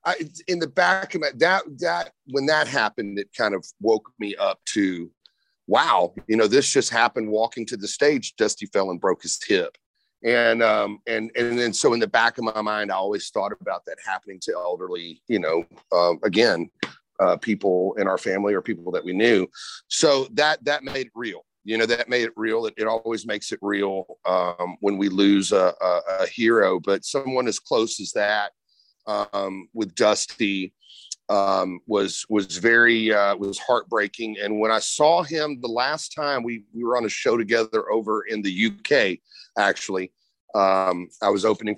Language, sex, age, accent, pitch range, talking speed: English, male, 40-59, American, 100-125 Hz, 190 wpm